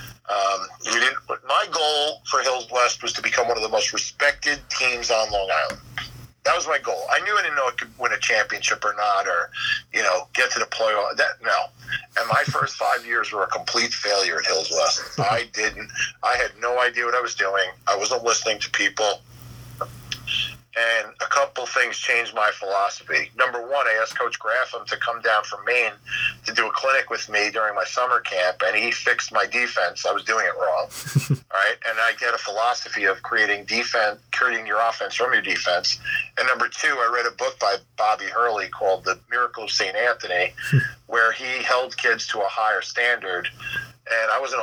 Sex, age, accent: male, 50-69, American